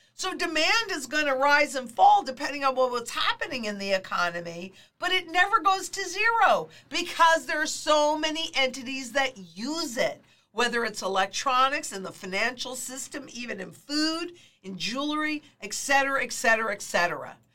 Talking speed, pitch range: 160 wpm, 200-300 Hz